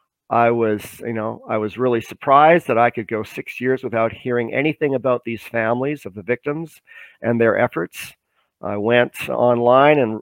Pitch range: 110-145 Hz